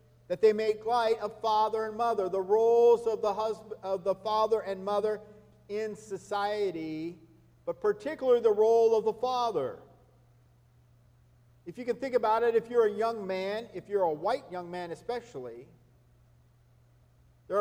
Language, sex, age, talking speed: English, male, 50-69, 150 wpm